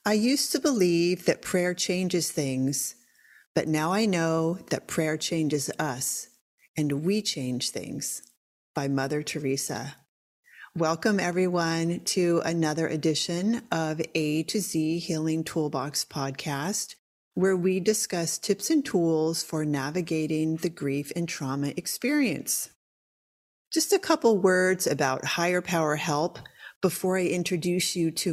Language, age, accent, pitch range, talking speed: English, 40-59, American, 155-195 Hz, 130 wpm